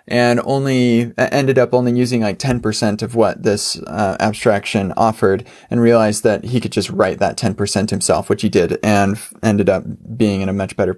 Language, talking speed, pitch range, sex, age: English, 190 wpm, 110-130 Hz, male, 20-39